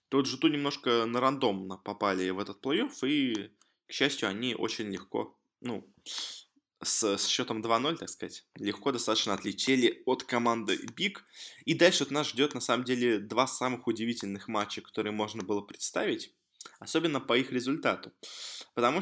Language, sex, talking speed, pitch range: Russian, male, 155 wpm, 110-155 Hz